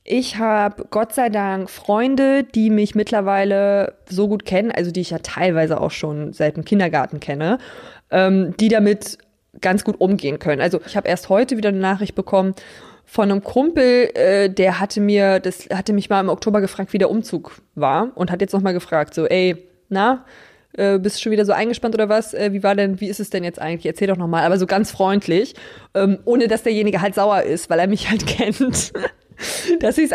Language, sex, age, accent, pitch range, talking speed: German, female, 20-39, German, 185-220 Hz, 210 wpm